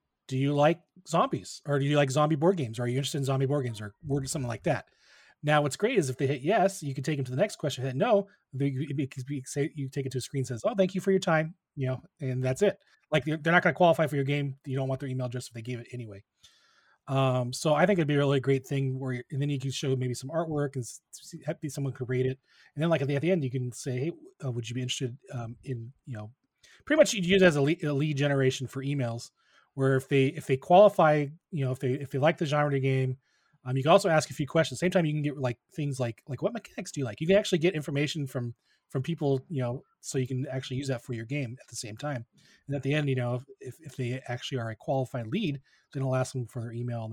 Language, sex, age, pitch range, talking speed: English, male, 30-49, 125-150 Hz, 295 wpm